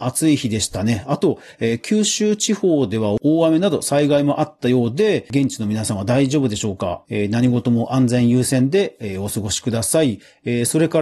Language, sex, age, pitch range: Japanese, male, 40-59, 115-160 Hz